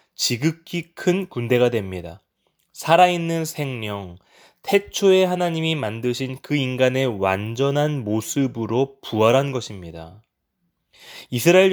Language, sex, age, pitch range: Korean, male, 20-39, 105-150 Hz